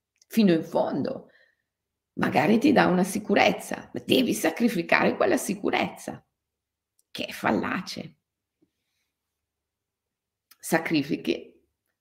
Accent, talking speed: native, 85 wpm